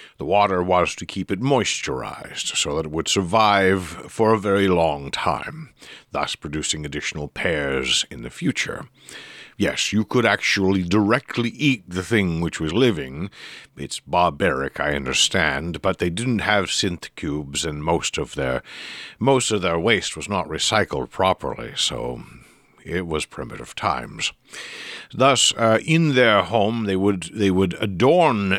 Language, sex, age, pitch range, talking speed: English, male, 60-79, 85-110 Hz, 150 wpm